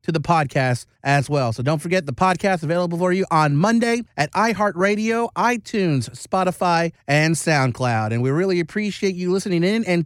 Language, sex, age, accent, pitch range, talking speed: English, male, 30-49, American, 150-200 Hz, 175 wpm